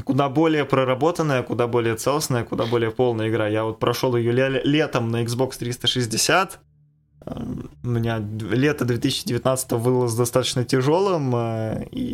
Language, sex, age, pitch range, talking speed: Russian, male, 20-39, 110-140 Hz, 130 wpm